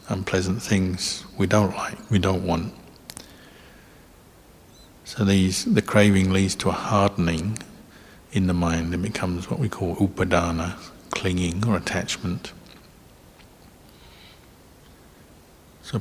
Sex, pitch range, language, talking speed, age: male, 90-100 Hz, English, 110 wpm, 60-79